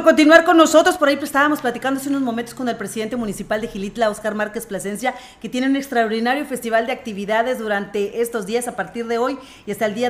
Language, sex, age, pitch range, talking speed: Spanish, female, 30-49, 215-245 Hz, 225 wpm